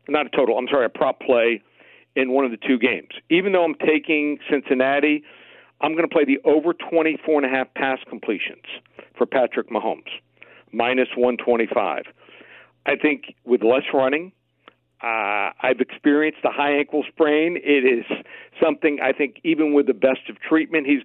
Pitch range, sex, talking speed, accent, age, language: 125-150 Hz, male, 165 wpm, American, 60-79, English